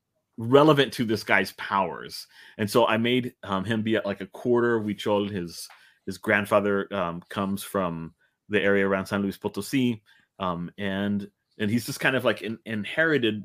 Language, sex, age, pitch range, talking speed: English, male, 30-49, 100-135 Hz, 180 wpm